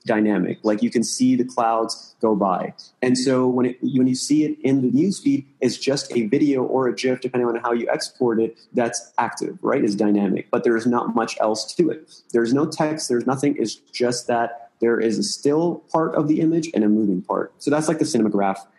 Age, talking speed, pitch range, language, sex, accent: 30-49, 225 wpm, 115-140 Hz, English, male, American